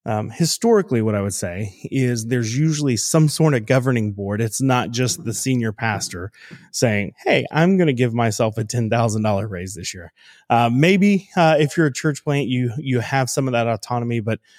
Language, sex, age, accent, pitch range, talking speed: English, male, 20-39, American, 115-155 Hz, 200 wpm